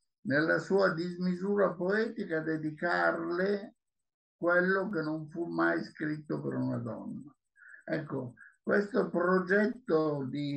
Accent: native